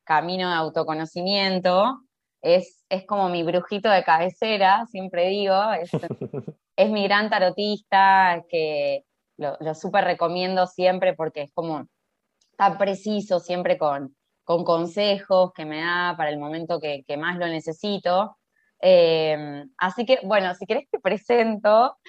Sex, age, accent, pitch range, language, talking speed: female, 20-39, Argentinian, 160-195 Hz, Spanish, 140 wpm